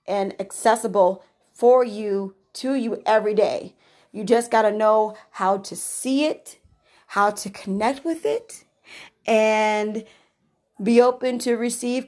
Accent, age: American, 30-49